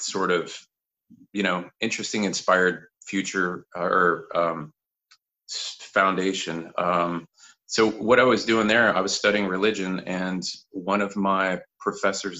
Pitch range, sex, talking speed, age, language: 85-105 Hz, male, 125 wpm, 30-49, English